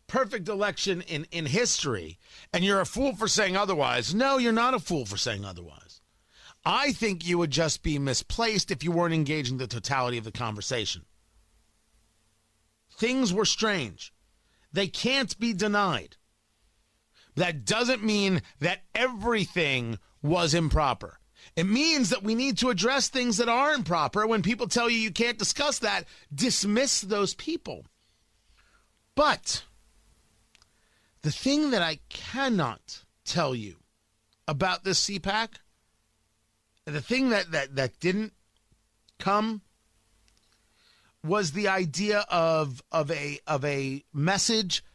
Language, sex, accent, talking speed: English, male, American, 130 wpm